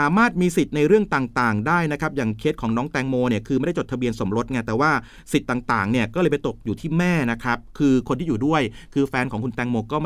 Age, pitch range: 30-49, 125-170 Hz